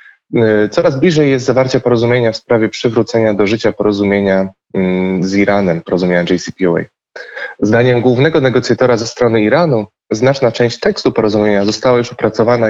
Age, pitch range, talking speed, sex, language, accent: 20-39, 110-130 Hz, 130 wpm, male, Polish, native